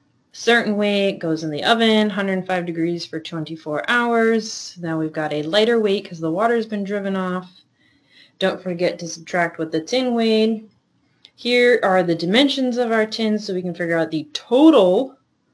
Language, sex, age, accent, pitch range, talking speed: English, female, 30-49, American, 160-200 Hz, 180 wpm